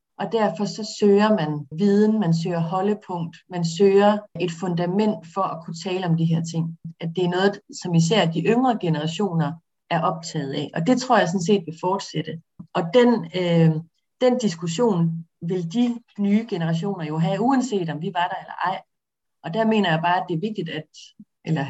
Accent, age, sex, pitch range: native, 30-49, female, 165-205 Hz